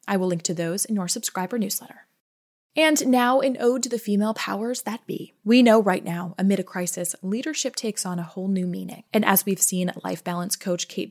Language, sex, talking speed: English, female, 220 wpm